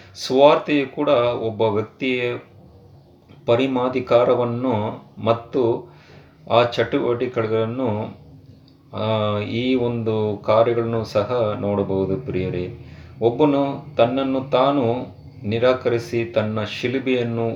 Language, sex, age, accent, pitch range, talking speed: Kannada, male, 30-49, native, 105-125 Hz, 70 wpm